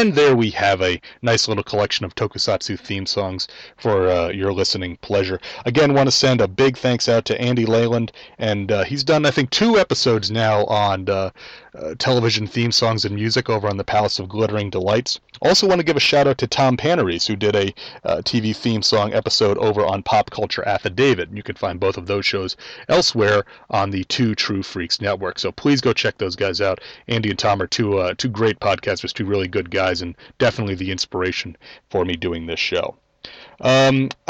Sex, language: male, English